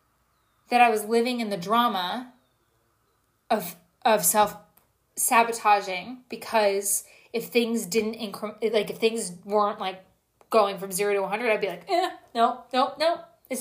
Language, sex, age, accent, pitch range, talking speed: English, female, 20-39, American, 205-250 Hz, 150 wpm